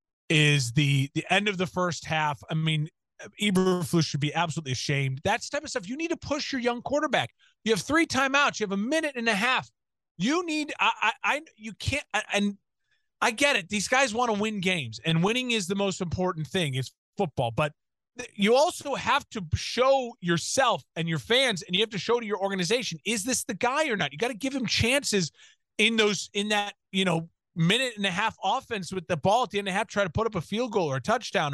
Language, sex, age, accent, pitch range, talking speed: English, male, 30-49, American, 175-240 Hz, 235 wpm